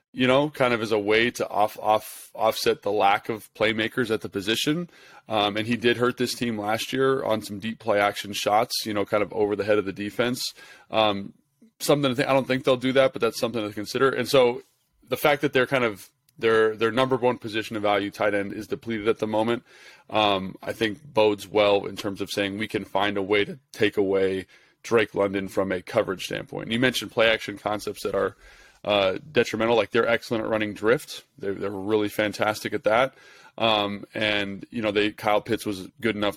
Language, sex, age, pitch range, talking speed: English, male, 20-39, 105-120 Hz, 220 wpm